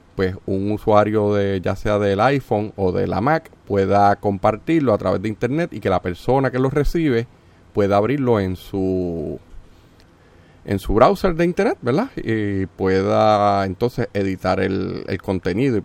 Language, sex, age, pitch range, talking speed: Spanish, male, 40-59, 95-120 Hz, 165 wpm